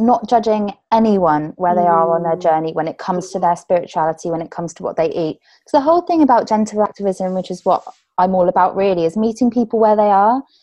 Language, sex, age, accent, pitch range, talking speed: English, female, 20-39, British, 180-240 Hz, 235 wpm